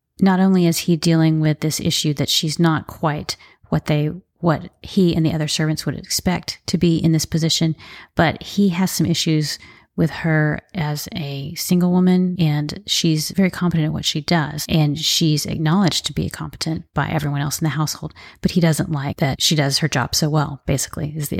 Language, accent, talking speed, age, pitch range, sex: English, American, 200 wpm, 30-49, 150-175 Hz, female